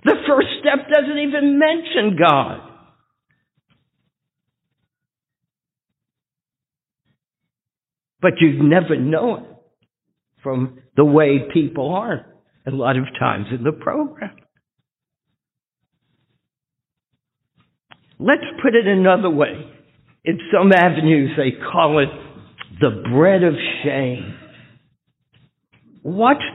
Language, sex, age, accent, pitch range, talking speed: English, male, 60-79, American, 145-245 Hz, 90 wpm